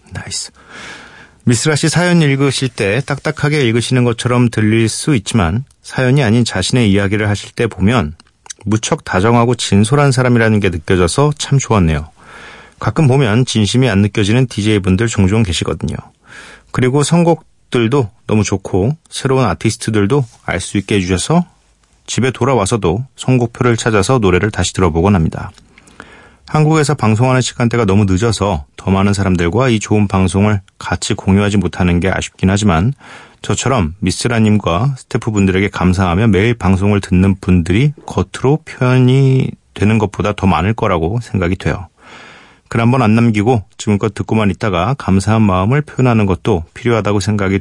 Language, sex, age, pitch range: Korean, male, 40-59, 95-125 Hz